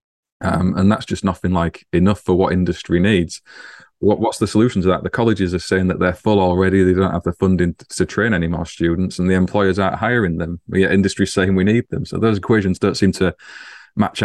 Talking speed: 225 wpm